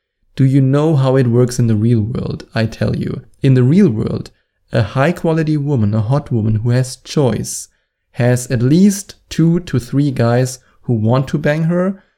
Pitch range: 125-160 Hz